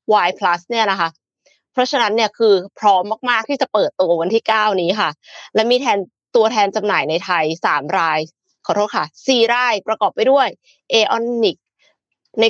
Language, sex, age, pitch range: Thai, female, 20-39, 185-240 Hz